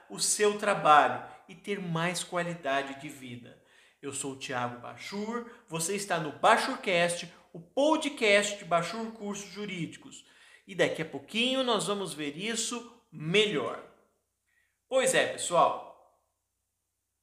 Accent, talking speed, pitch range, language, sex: Brazilian, 125 wpm, 170-245 Hz, Portuguese, male